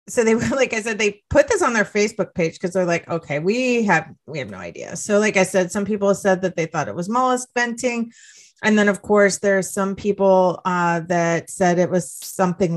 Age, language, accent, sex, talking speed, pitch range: 30-49, English, American, female, 240 wpm, 165-195 Hz